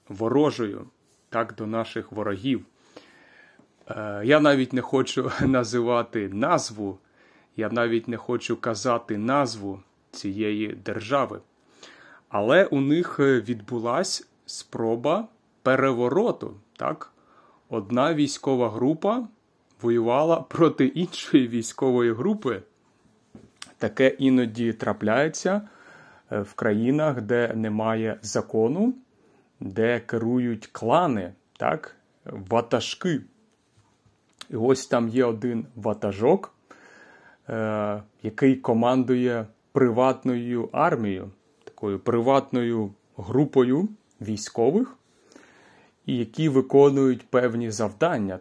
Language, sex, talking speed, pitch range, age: Ukrainian, male, 85 wpm, 110-135 Hz, 30-49